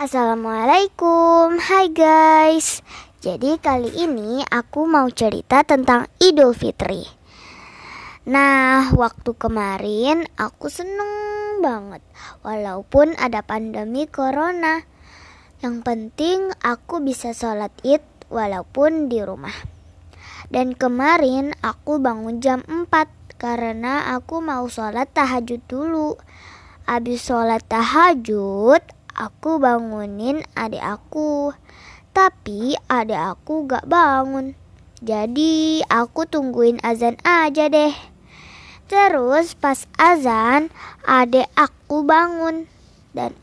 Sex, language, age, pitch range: male, Indonesian, 20-39, 235-315 Hz